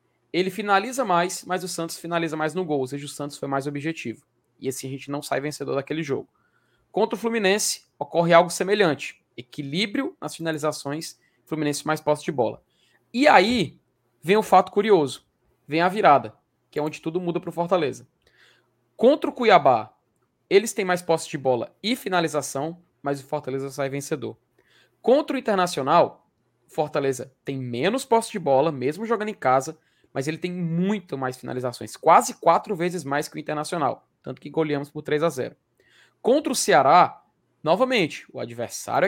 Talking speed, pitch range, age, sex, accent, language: 175 wpm, 145-195 Hz, 20-39, male, Brazilian, Portuguese